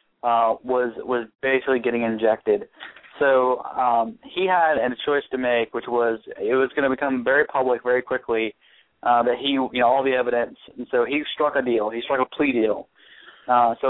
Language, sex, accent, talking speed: English, male, American, 200 wpm